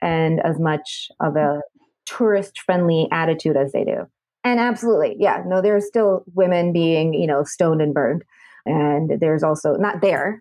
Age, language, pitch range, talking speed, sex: 30-49, English, 155-190 Hz, 165 wpm, female